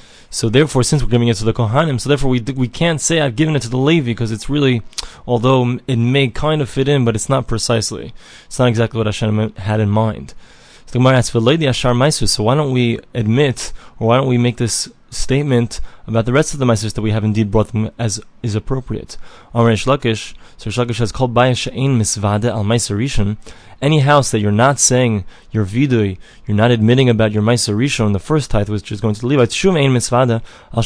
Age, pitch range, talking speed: 20-39, 110-130 Hz, 195 wpm